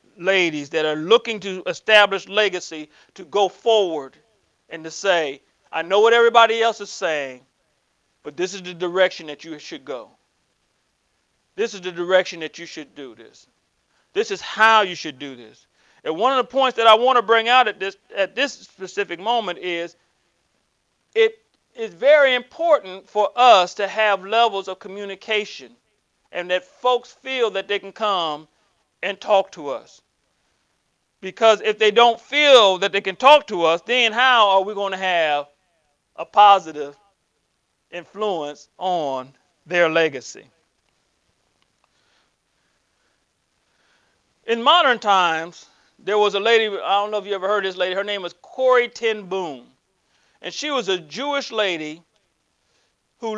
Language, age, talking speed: English, 40-59, 155 wpm